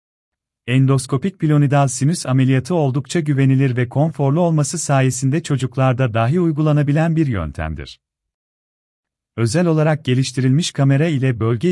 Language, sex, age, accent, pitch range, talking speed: Turkish, male, 40-59, native, 115-145 Hz, 110 wpm